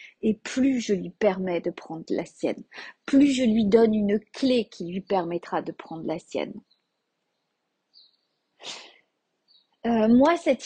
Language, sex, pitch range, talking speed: French, female, 200-280 Hz, 140 wpm